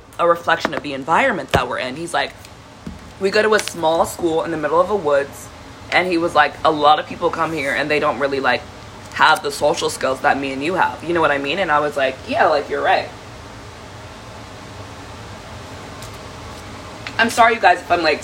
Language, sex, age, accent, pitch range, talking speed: English, female, 20-39, American, 135-175 Hz, 215 wpm